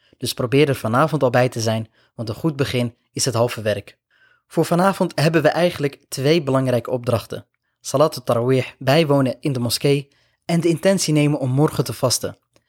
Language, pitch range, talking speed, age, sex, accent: Dutch, 120-145 Hz, 185 wpm, 20-39, male, Dutch